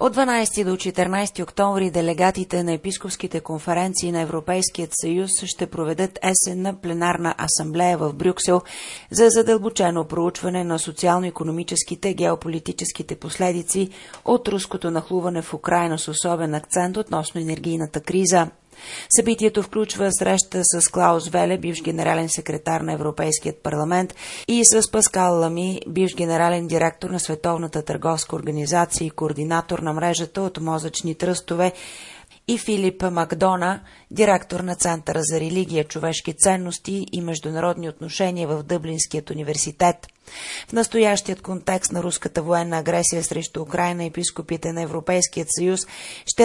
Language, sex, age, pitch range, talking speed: Bulgarian, female, 30-49, 165-185 Hz, 125 wpm